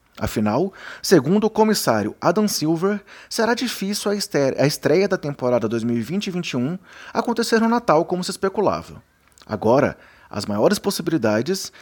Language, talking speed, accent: Portuguese, 115 wpm, Brazilian